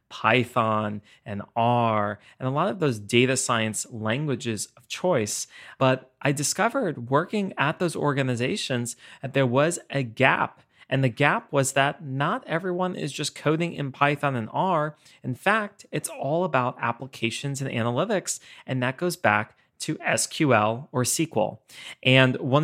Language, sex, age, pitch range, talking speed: English, male, 20-39, 120-155 Hz, 150 wpm